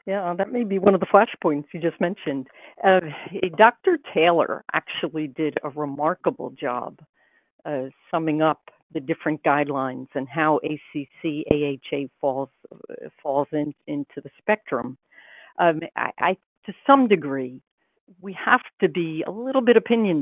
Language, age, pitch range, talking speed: English, 60-79, 150-200 Hz, 145 wpm